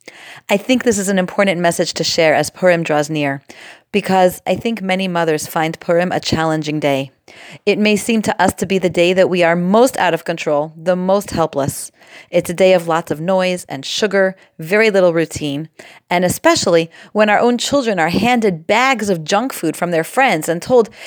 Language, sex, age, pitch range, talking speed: English, female, 30-49, 165-205 Hz, 200 wpm